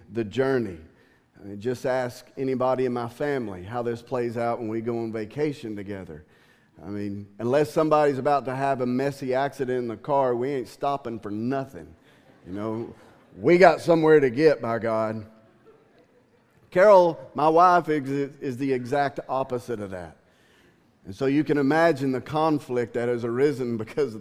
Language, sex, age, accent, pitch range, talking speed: English, male, 40-59, American, 120-165 Hz, 165 wpm